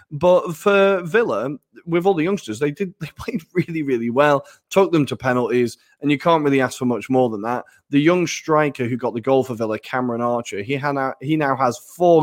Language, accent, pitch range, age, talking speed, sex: English, British, 115-145 Hz, 20-39, 220 wpm, male